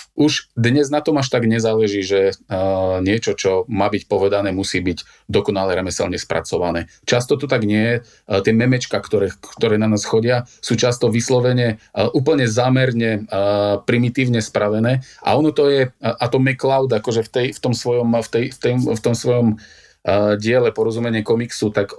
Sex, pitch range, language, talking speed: male, 105-125 Hz, Slovak, 160 wpm